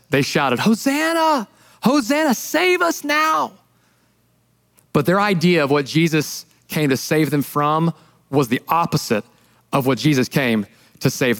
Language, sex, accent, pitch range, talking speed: English, male, American, 150-235 Hz, 140 wpm